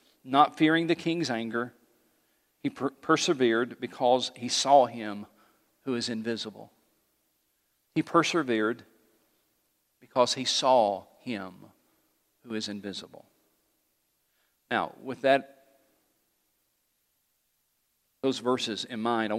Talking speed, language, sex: 100 wpm, English, male